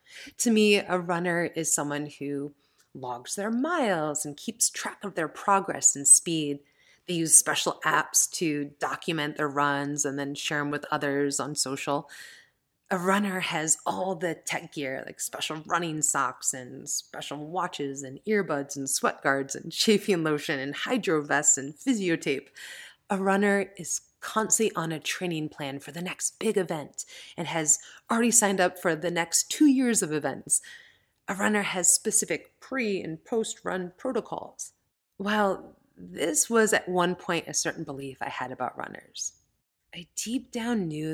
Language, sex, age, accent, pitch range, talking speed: English, female, 30-49, American, 145-200 Hz, 165 wpm